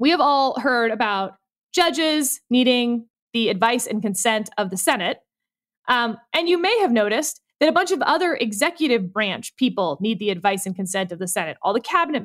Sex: female